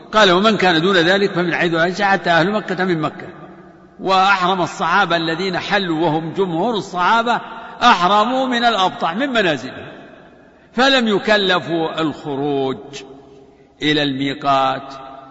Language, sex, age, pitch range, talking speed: Arabic, male, 60-79, 160-205 Hz, 120 wpm